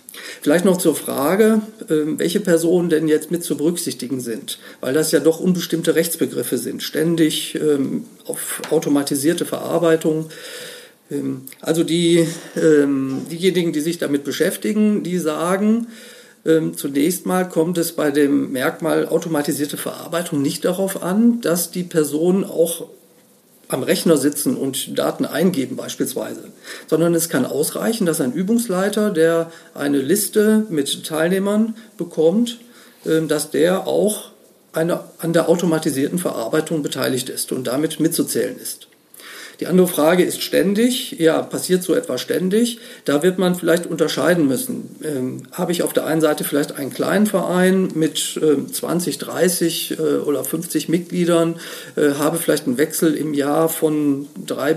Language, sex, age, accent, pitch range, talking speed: German, male, 40-59, German, 155-180 Hz, 135 wpm